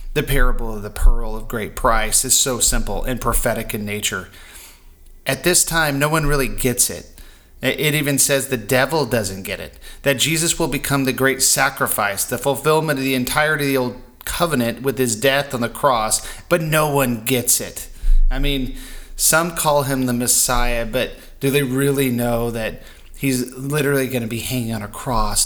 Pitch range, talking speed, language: 105-135 Hz, 185 wpm, English